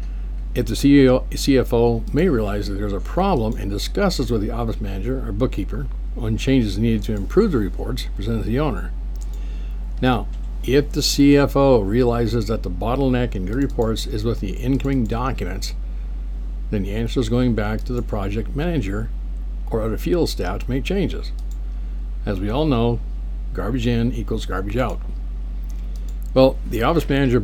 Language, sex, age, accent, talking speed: English, male, 60-79, American, 160 wpm